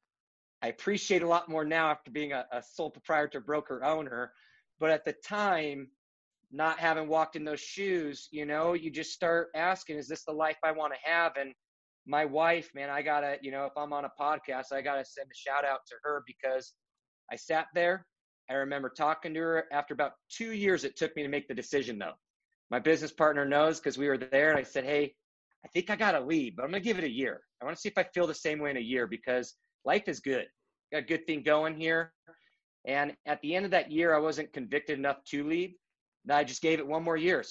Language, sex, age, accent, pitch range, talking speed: English, male, 30-49, American, 140-165 Hz, 245 wpm